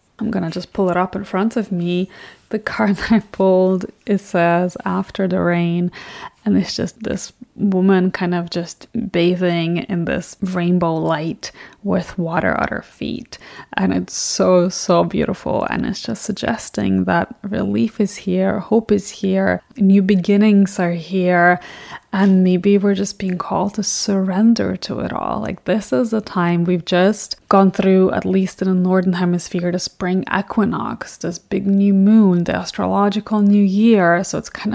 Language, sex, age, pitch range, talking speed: English, female, 20-39, 180-210 Hz, 170 wpm